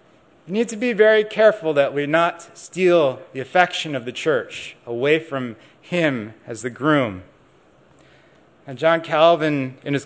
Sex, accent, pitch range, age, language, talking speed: male, American, 145-195 Hz, 30-49, English, 150 wpm